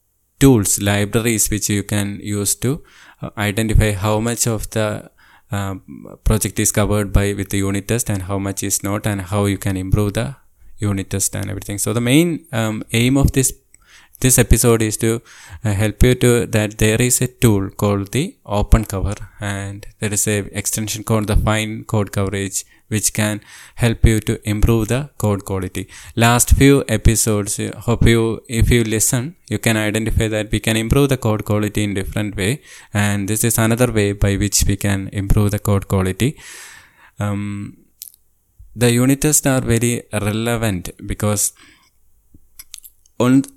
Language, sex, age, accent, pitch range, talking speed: English, male, 20-39, Indian, 100-120 Hz, 170 wpm